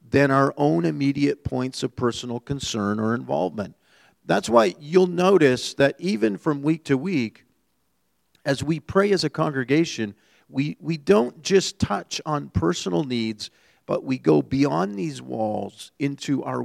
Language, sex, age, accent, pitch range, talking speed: English, male, 50-69, American, 115-155 Hz, 150 wpm